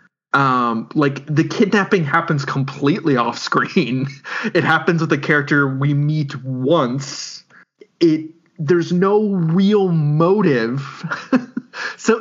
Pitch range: 130-195 Hz